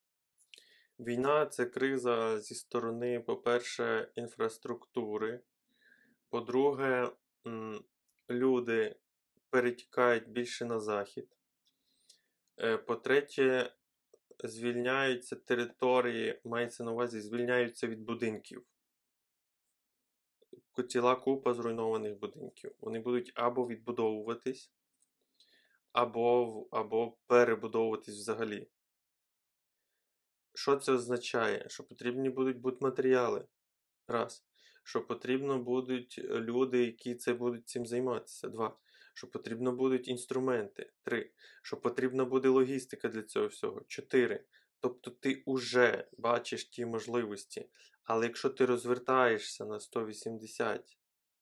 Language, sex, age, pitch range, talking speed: Ukrainian, male, 20-39, 115-130 Hz, 90 wpm